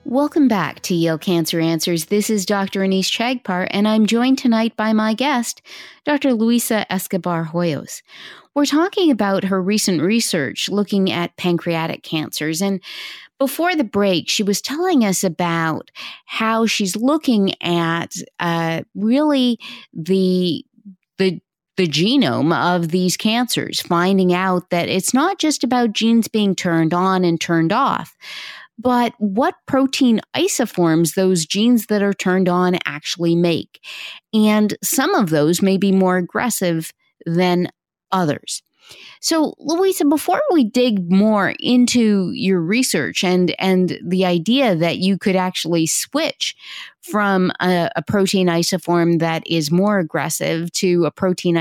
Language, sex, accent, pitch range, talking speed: English, female, American, 175-240 Hz, 140 wpm